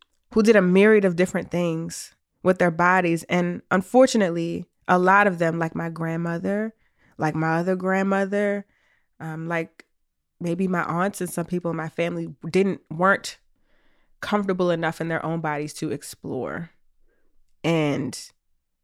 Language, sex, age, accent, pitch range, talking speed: English, female, 20-39, American, 170-260 Hz, 145 wpm